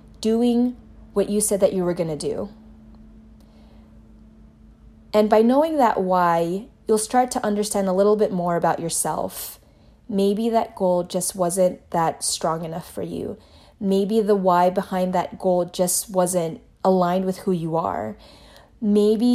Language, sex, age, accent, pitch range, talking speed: English, female, 20-39, American, 165-210 Hz, 150 wpm